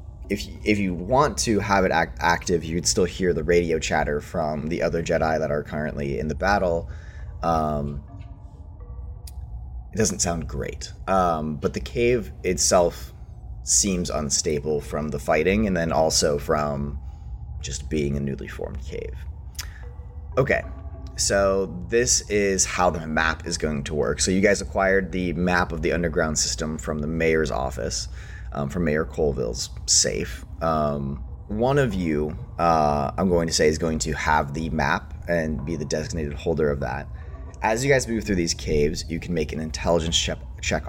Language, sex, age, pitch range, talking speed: English, male, 30-49, 75-90 Hz, 165 wpm